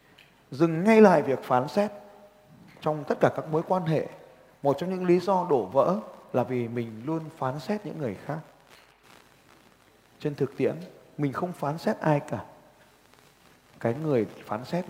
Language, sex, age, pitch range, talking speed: Vietnamese, male, 20-39, 135-175 Hz, 170 wpm